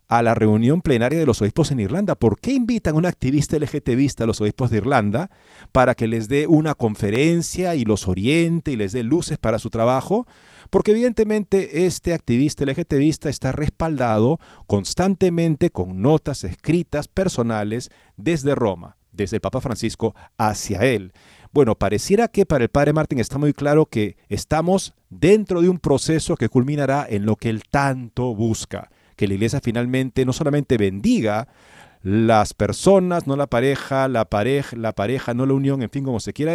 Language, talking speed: Spanish, 170 wpm